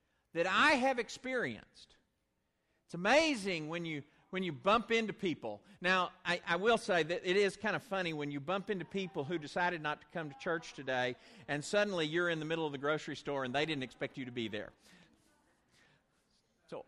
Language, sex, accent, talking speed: English, male, American, 200 wpm